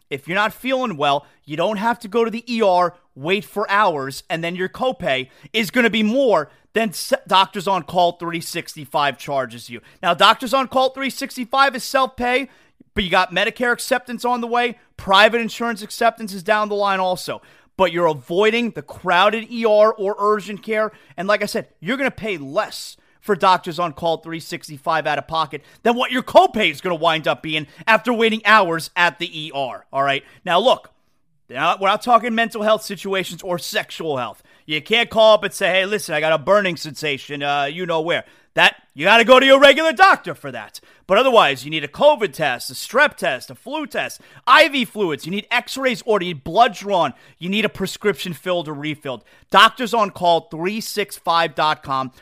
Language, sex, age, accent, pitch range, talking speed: English, male, 30-49, American, 165-235 Hz, 200 wpm